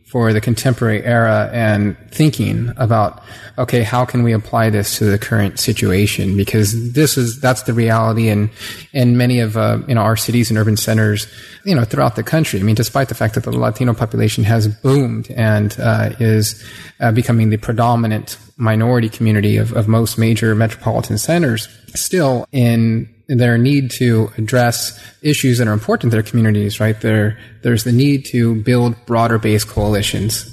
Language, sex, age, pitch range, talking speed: English, male, 30-49, 110-125 Hz, 175 wpm